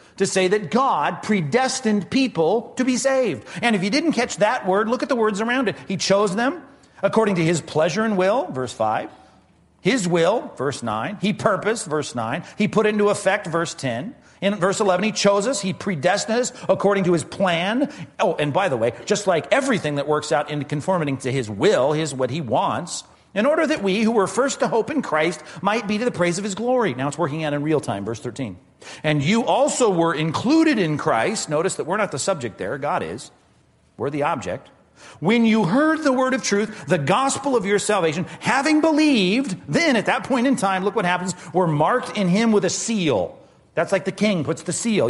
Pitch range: 160-225 Hz